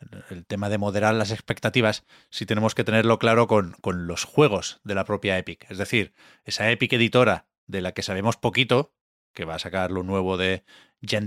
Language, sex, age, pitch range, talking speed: Spanish, male, 30-49, 95-120 Hz, 195 wpm